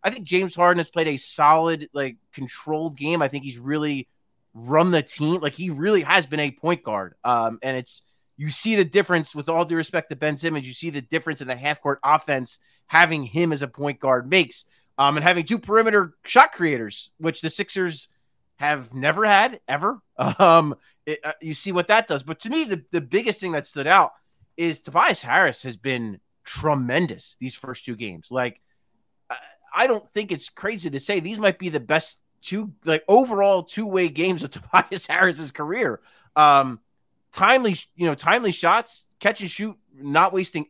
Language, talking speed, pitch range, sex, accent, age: English, 195 wpm, 140-190 Hz, male, American, 30-49